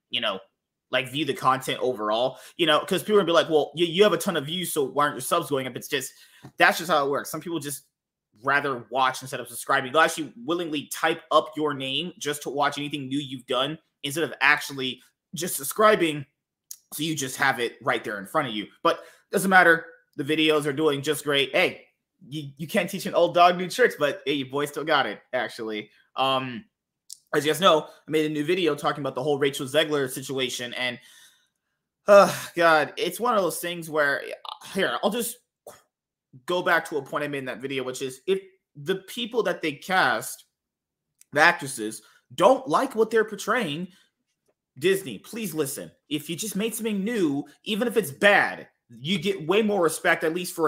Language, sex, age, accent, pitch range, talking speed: English, male, 20-39, American, 140-180 Hz, 210 wpm